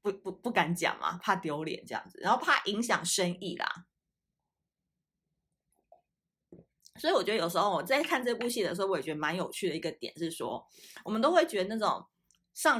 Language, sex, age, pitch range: Chinese, female, 20-39, 175-240 Hz